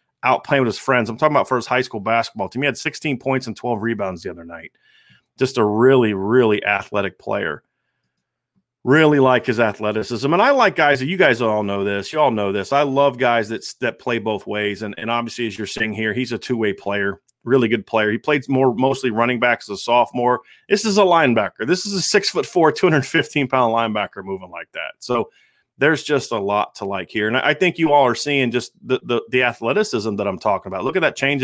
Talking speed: 235 wpm